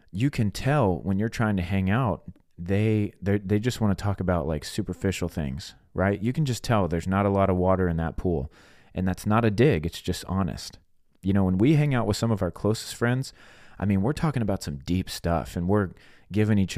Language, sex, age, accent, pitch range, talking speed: English, male, 30-49, American, 90-110 Hz, 235 wpm